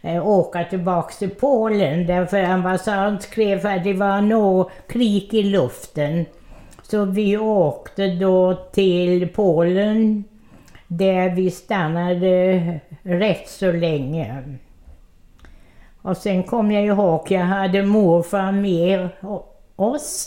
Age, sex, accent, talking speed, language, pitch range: 60-79, female, Swedish, 105 wpm, English, 175-200 Hz